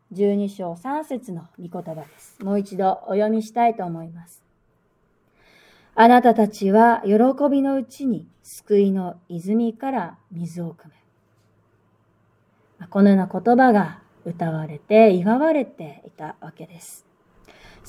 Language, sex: Japanese, female